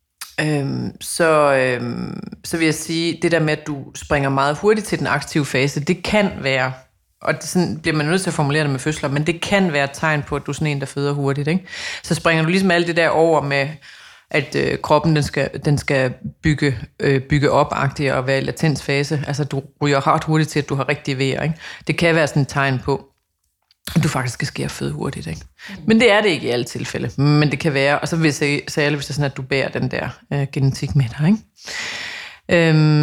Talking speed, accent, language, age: 240 wpm, native, Danish, 30-49